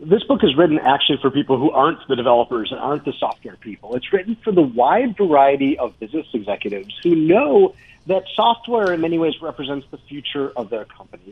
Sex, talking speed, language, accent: male, 200 wpm, English, American